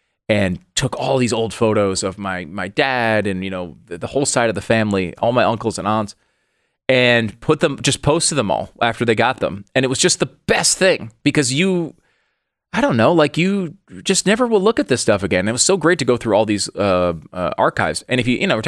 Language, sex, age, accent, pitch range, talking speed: English, male, 30-49, American, 100-130 Hz, 240 wpm